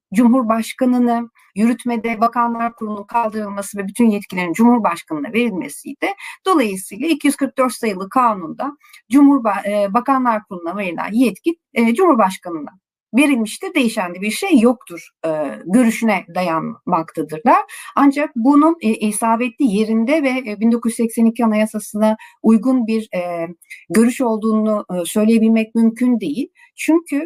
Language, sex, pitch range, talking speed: Turkish, female, 200-255 Hz, 95 wpm